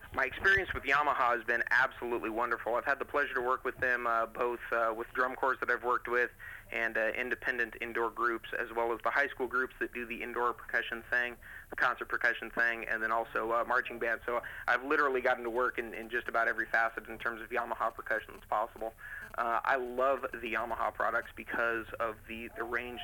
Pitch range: 115-125 Hz